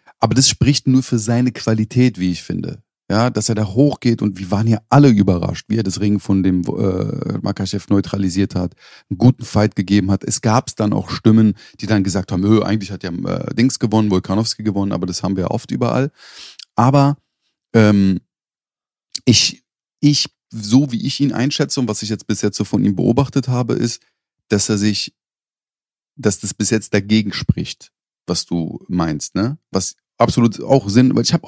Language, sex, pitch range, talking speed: German, male, 100-120 Hz, 195 wpm